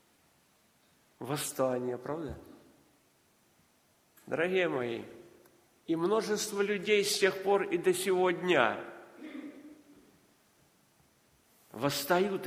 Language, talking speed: Russian, 65 wpm